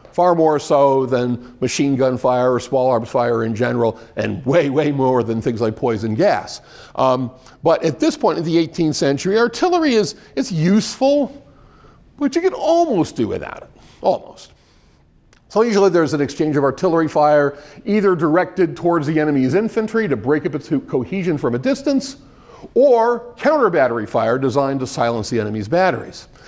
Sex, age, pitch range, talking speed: male, 50-69, 130-190 Hz, 170 wpm